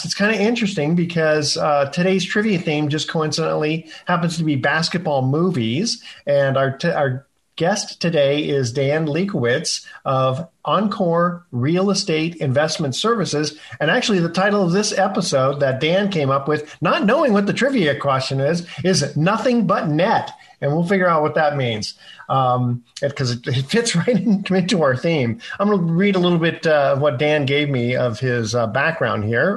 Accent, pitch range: American, 140-185 Hz